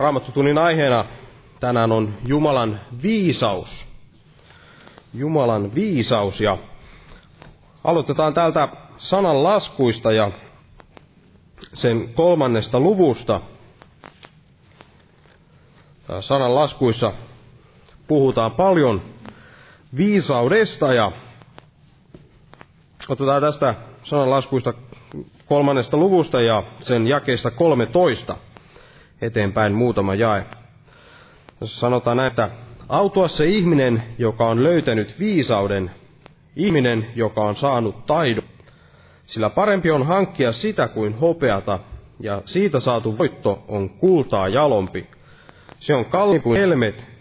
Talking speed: 90 wpm